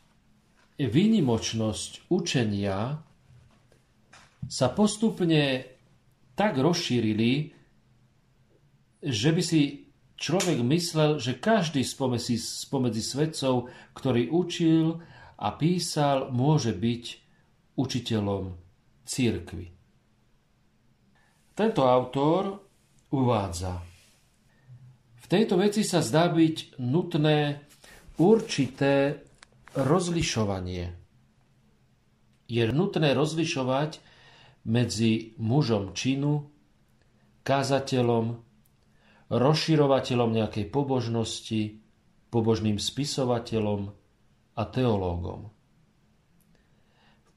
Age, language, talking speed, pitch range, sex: 40-59, Slovak, 65 wpm, 110-155 Hz, male